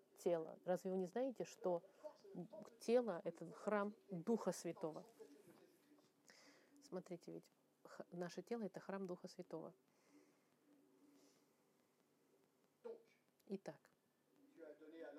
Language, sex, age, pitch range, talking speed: French, female, 30-49, 180-240 Hz, 85 wpm